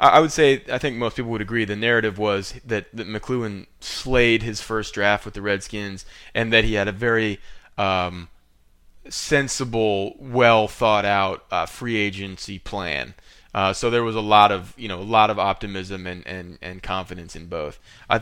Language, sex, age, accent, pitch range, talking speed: English, male, 20-39, American, 95-110 Hz, 190 wpm